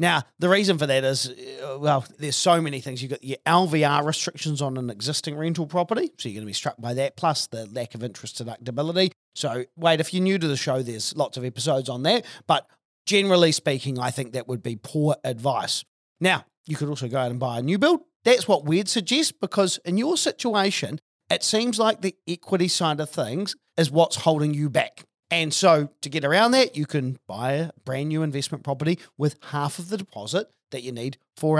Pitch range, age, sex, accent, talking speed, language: 135-185 Hz, 40-59, male, Australian, 215 wpm, English